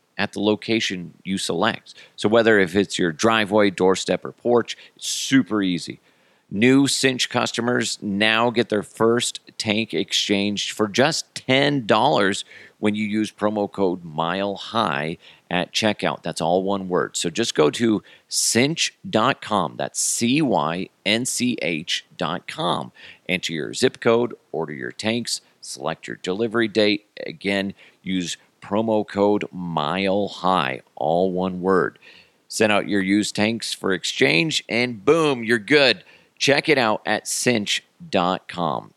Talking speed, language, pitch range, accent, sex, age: 130 wpm, English, 95-115 Hz, American, male, 40-59